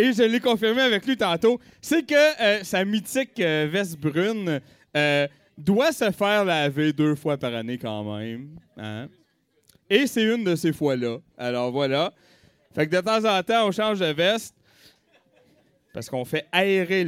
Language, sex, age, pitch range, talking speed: French, male, 30-49, 155-240 Hz, 170 wpm